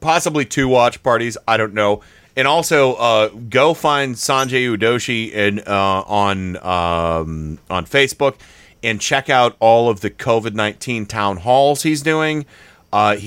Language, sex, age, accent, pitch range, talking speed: English, male, 30-49, American, 95-125 Hz, 145 wpm